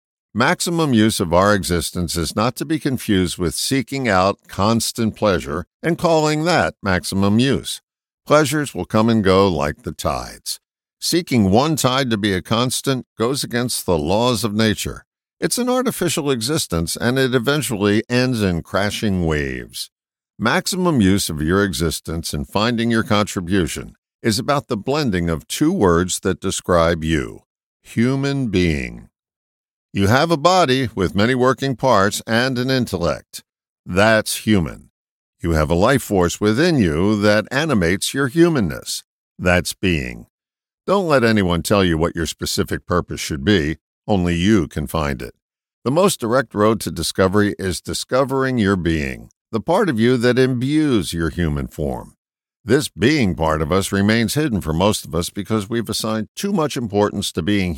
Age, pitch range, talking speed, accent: 60-79, 85-130 Hz, 160 wpm, American